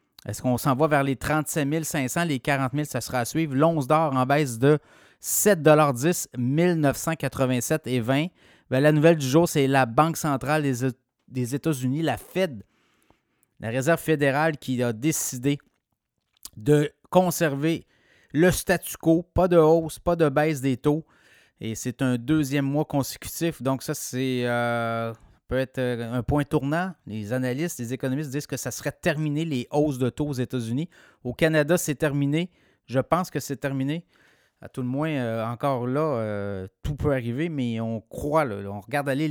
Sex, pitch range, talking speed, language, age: male, 125-155 Hz, 170 wpm, French, 30-49